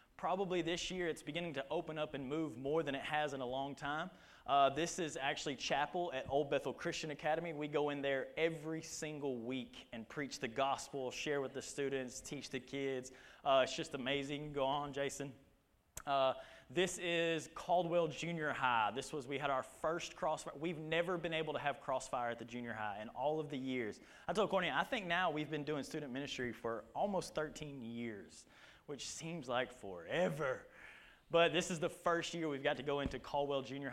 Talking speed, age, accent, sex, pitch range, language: 200 wpm, 20-39, American, male, 130-160 Hz, English